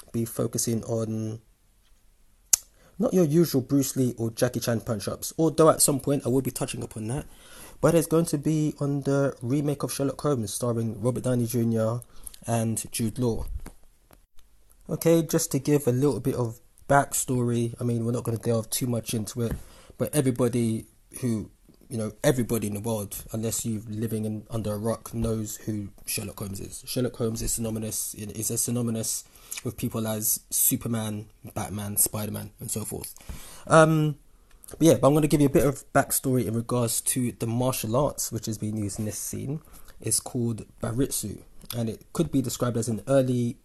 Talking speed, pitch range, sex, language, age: 185 wpm, 110-135 Hz, male, English, 20-39